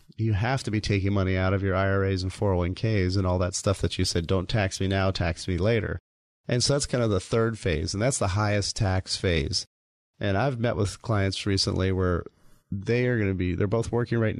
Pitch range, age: 95-115 Hz, 30-49